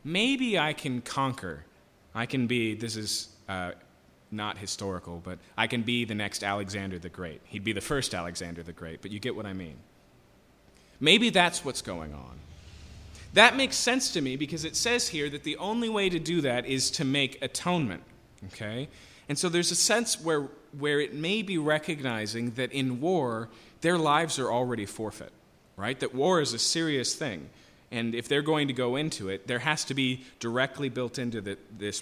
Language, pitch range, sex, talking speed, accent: English, 95-140 Hz, male, 190 wpm, American